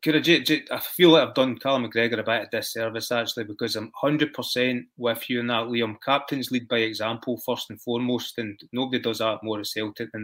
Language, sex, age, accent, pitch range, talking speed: English, male, 20-39, British, 115-140 Hz, 205 wpm